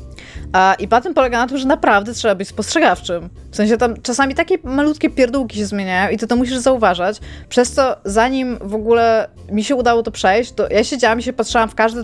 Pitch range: 195-240 Hz